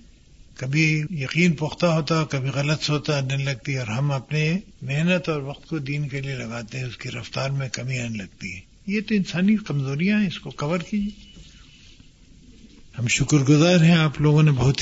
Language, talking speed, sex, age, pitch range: Urdu, 185 wpm, male, 60-79, 135-175 Hz